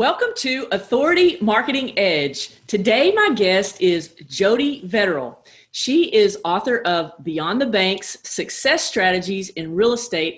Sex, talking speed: female, 135 wpm